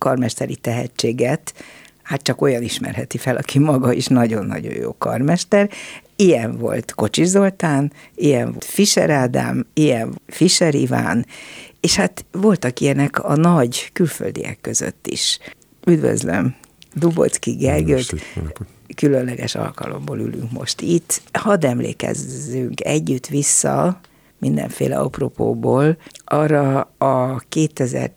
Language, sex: Hungarian, female